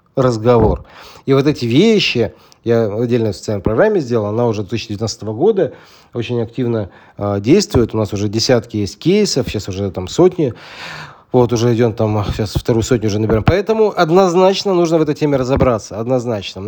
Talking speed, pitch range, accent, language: 165 wpm, 120-175 Hz, native, Russian